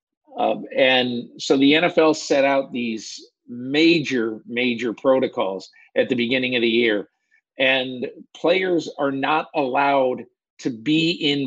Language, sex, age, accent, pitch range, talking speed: English, male, 50-69, American, 130-165 Hz, 130 wpm